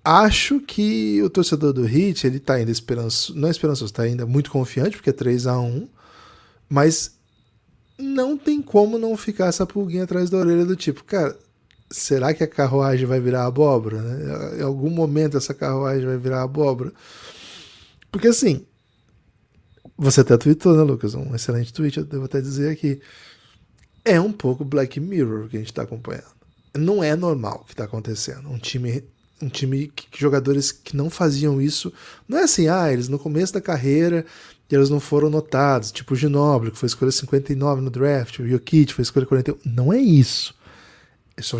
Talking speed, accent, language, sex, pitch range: 180 wpm, Brazilian, Portuguese, male, 120-155 Hz